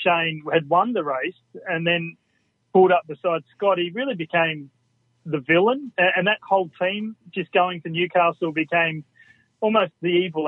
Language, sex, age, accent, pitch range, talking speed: English, male, 30-49, Australian, 155-190 Hz, 160 wpm